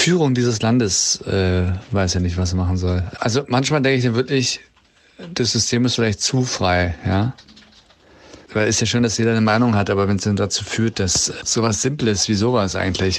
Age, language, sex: 40-59, German, male